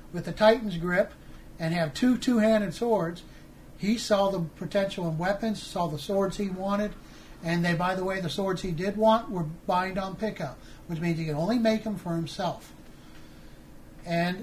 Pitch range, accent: 170-210 Hz, American